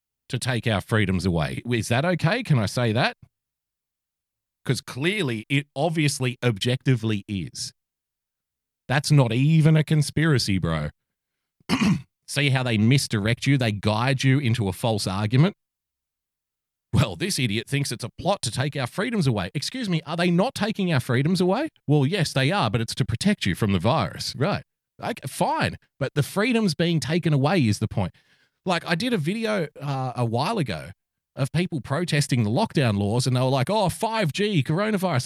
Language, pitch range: English, 110-165 Hz